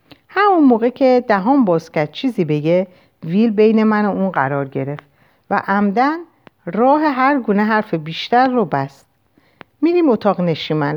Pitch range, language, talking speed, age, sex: 155-220 Hz, Persian, 140 wpm, 50-69, female